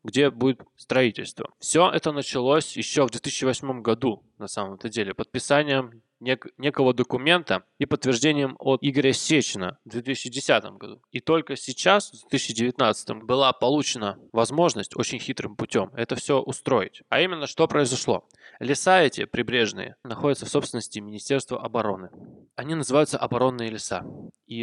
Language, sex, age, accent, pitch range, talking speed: Russian, male, 20-39, native, 115-150 Hz, 135 wpm